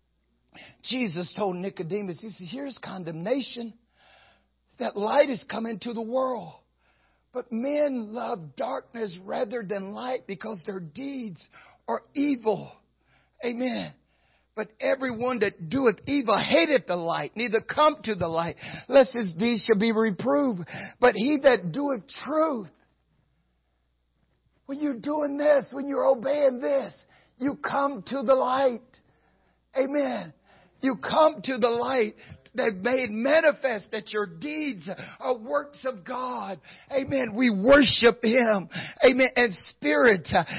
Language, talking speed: English, 130 wpm